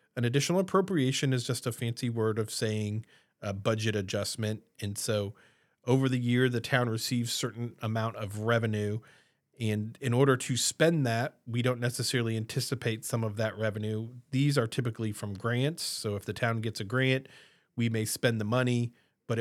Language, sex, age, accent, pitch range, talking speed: English, male, 40-59, American, 105-130 Hz, 175 wpm